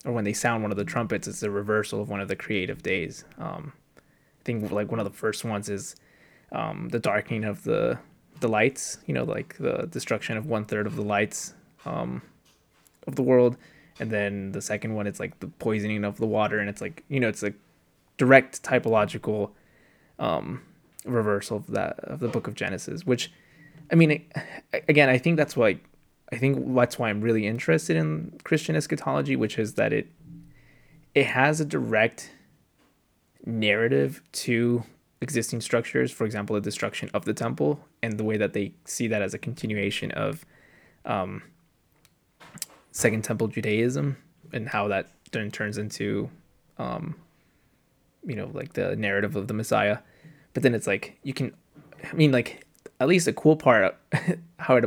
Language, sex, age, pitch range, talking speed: English, male, 20-39, 105-135 Hz, 180 wpm